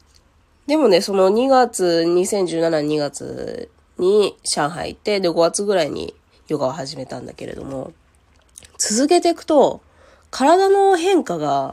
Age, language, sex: 20-39, Japanese, female